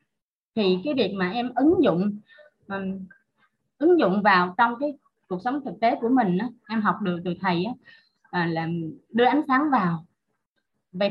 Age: 20-39